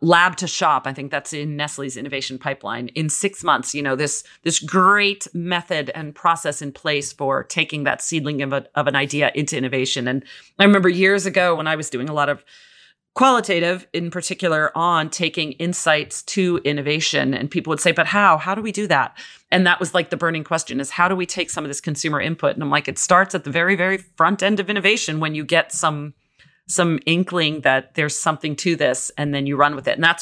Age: 40-59